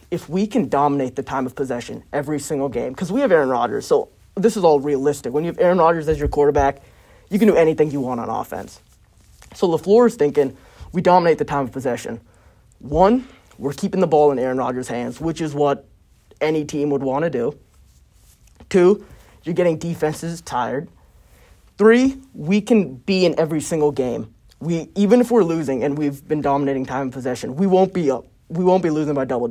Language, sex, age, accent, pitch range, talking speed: English, male, 20-39, American, 140-185 Hz, 205 wpm